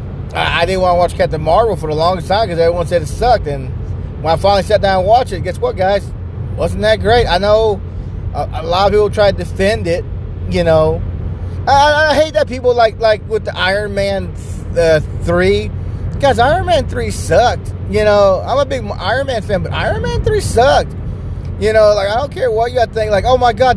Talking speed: 230 wpm